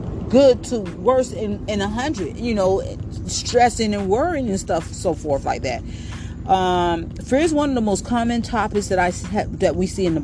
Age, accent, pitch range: 40-59, American, 150-190 Hz